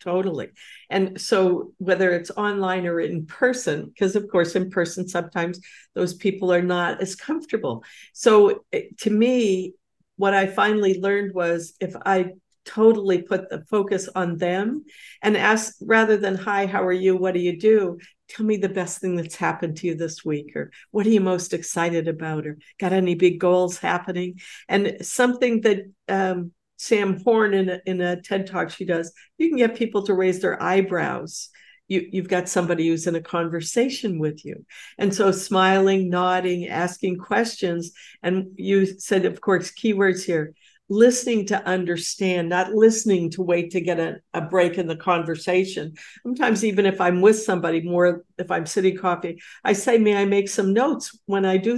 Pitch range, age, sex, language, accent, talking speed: 180-205 Hz, 50-69, female, English, American, 175 wpm